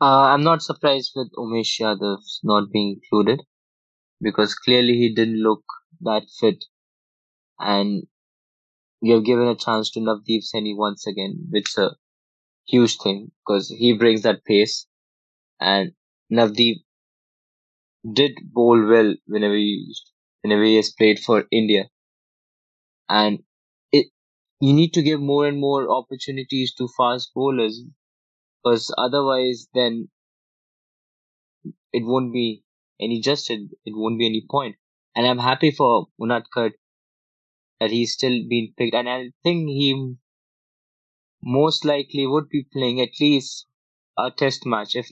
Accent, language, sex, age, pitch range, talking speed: Indian, English, male, 20-39, 110-135 Hz, 135 wpm